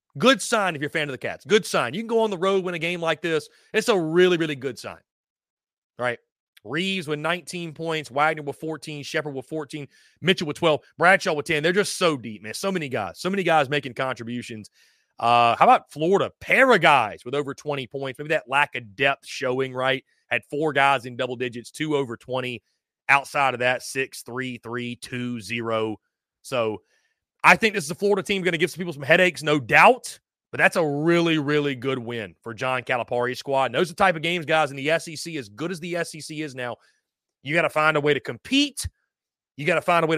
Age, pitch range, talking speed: 30-49, 130-175 Hz, 225 wpm